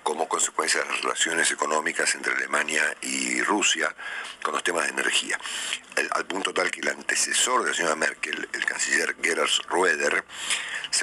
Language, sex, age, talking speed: Spanish, male, 50-69, 170 wpm